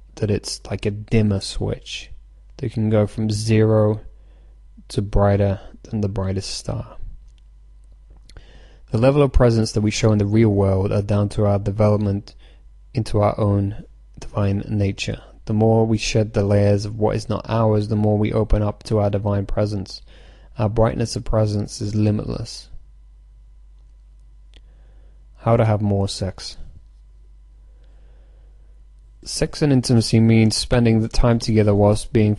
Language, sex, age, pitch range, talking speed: English, male, 20-39, 95-110 Hz, 145 wpm